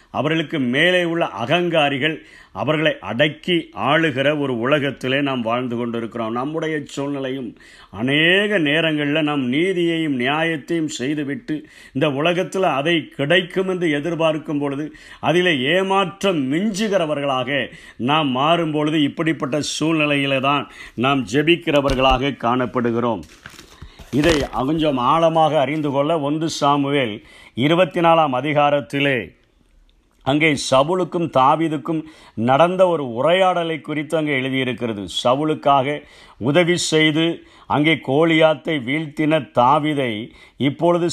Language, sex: Tamil, male